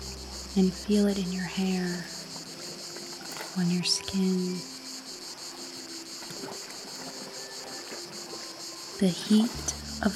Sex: female